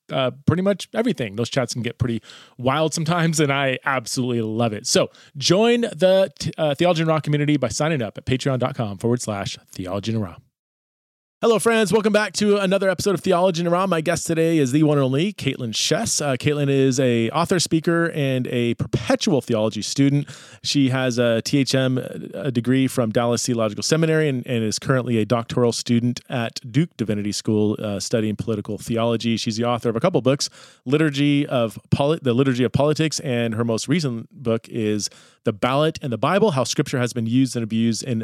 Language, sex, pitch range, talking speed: English, male, 120-155 Hz, 195 wpm